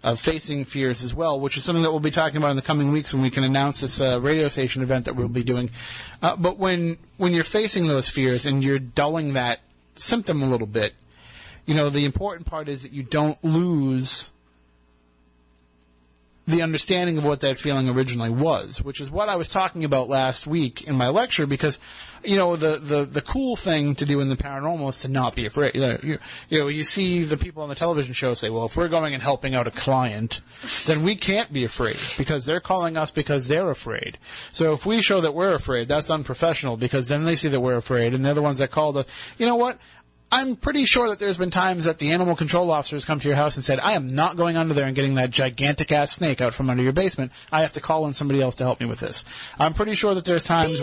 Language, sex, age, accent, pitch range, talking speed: English, male, 30-49, American, 130-165 Hz, 250 wpm